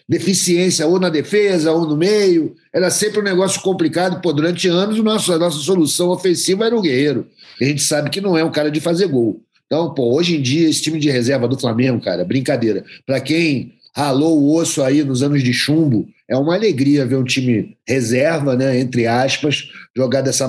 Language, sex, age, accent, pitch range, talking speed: Portuguese, male, 50-69, Brazilian, 140-180 Hz, 205 wpm